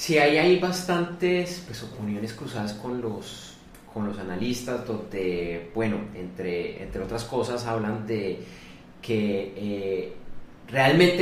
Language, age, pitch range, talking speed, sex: Spanish, 30-49, 105-135 Hz, 110 wpm, male